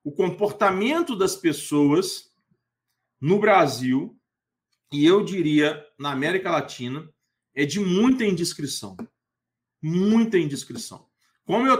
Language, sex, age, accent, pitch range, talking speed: Portuguese, male, 40-59, Brazilian, 150-205 Hz, 100 wpm